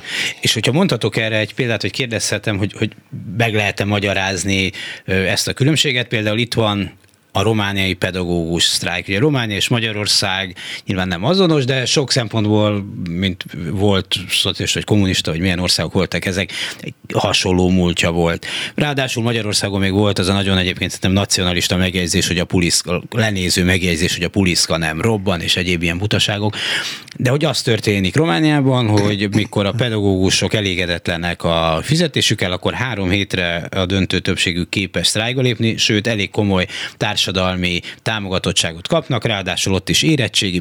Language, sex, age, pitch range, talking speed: Hungarian, male, 30-49, 90-115 Hz, 150 wpm